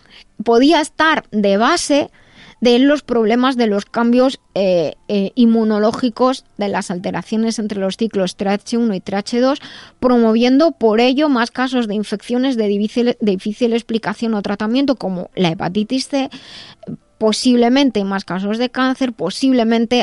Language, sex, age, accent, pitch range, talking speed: Spanish, female, 20-39, Spanish, 200-255 Hz, 140 wpm